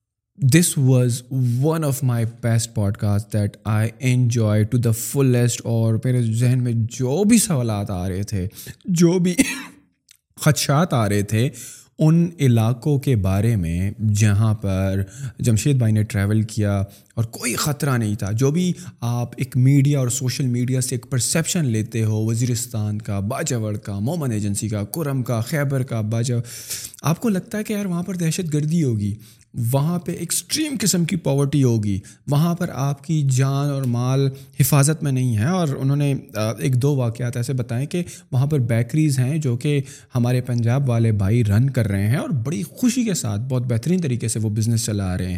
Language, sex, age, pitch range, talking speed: Urdu, male, 20-39, 110-145 Hz, 180 wpm